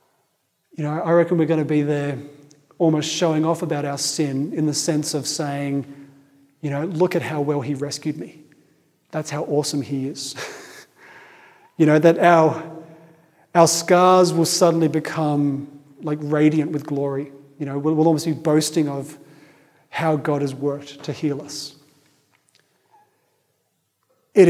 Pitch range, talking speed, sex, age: 145-170 Hz, 150 wpm, male, 40-59